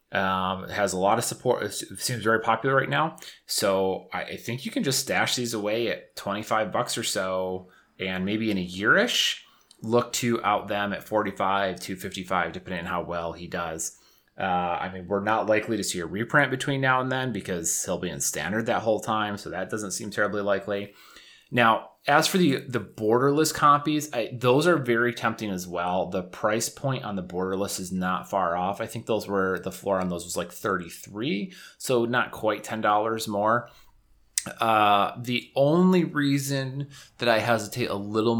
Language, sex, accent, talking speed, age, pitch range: English, male, American, 195 wpm, 30-49, 95-120 Hz